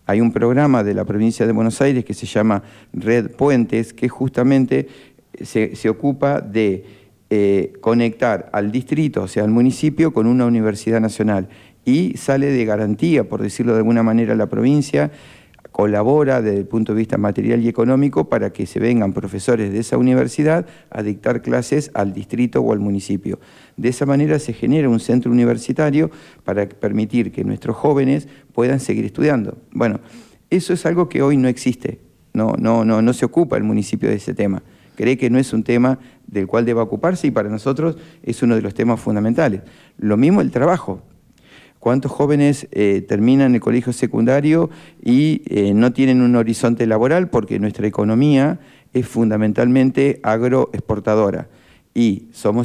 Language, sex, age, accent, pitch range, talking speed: Spanish, male, 50-69, Argentinian, 110-140 Hz, 170 wpm